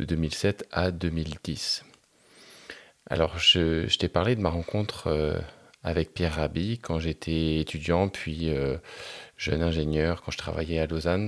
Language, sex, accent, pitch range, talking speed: French, male, French, 80-90 Hz, 150 wpm